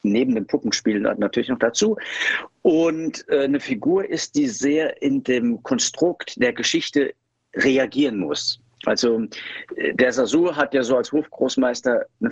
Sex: male